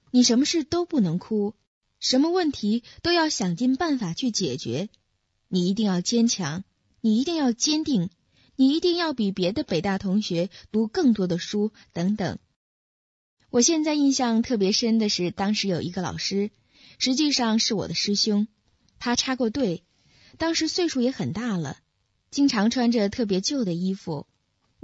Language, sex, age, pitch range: Chinese, female, 20-39, 185-250 Hz